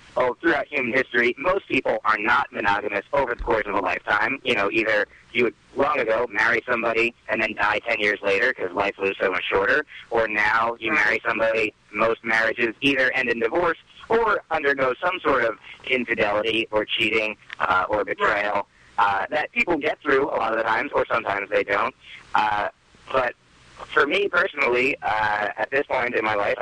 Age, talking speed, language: 30-49, 190 wpm, English